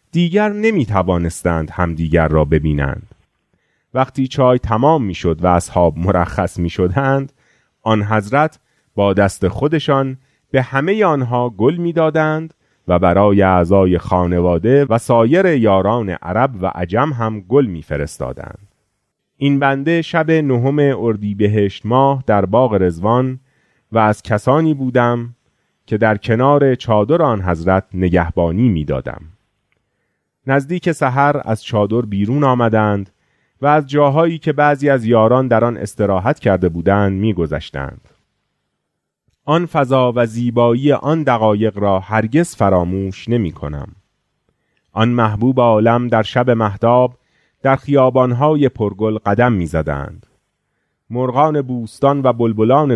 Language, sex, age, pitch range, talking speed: Persian, male, 30-49, 95-135 Hz, 115 wpm